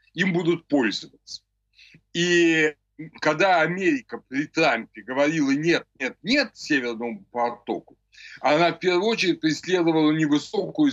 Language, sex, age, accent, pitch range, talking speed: Ukrainian, male, 60-79, native, 120-175 Hz, 100 wpm